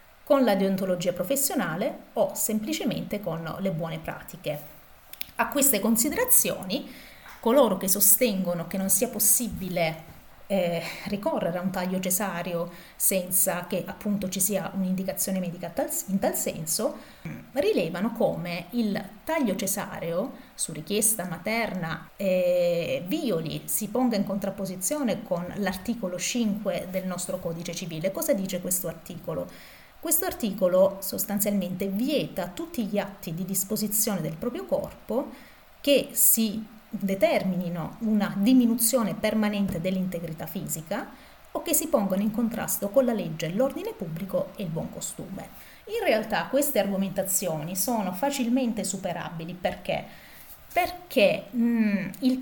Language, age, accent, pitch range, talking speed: Italian, 30-49, native, 185-235 Hz, 120 wpm